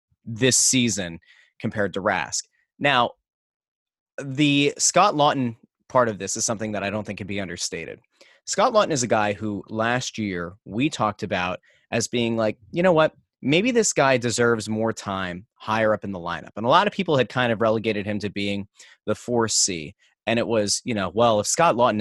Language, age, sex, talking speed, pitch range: English, 30-49, male, 195 wpm, 105-130 Hz